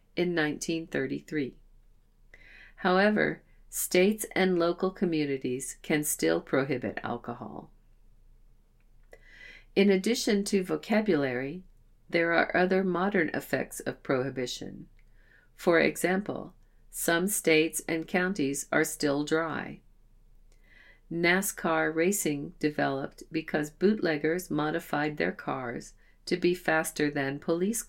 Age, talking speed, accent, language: 50-69, 95 wpm, American, English